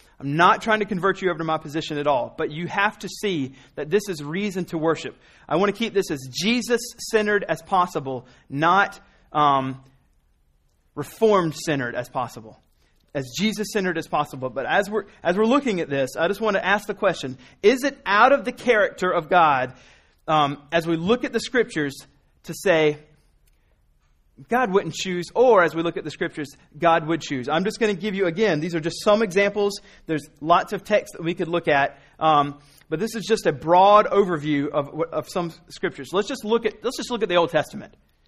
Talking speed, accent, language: 210 wpm, American, English